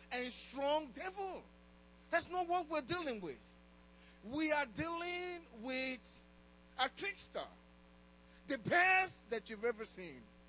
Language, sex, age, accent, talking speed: English, male, 50-69, Nigerian, 120 wpm